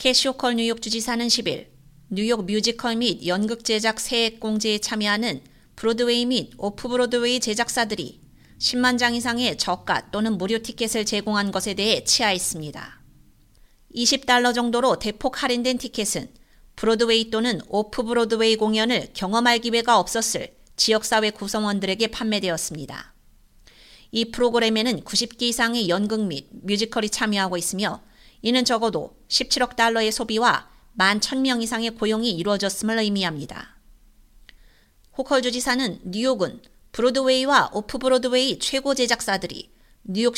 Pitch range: 215-245 Hz